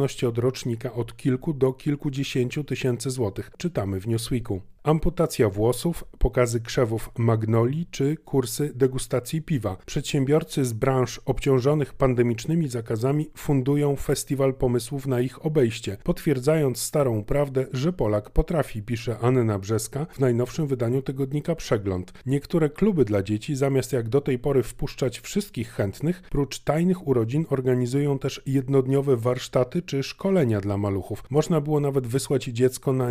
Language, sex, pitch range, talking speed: Polish, male, 120-150 Hz, 135 wpm